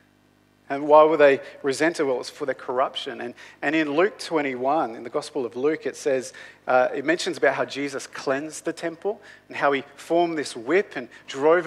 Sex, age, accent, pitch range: male, 40-59, Australian, 135-170 Hz